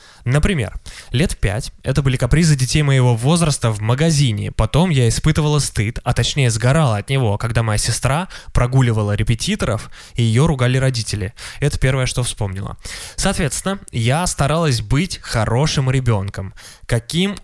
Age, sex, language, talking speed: 20-39, male, Russian, 140 wpm